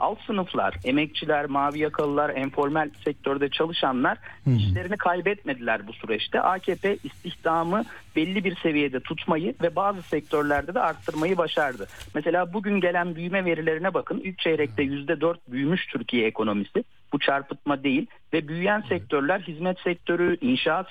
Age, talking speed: 50-69, 130 wpm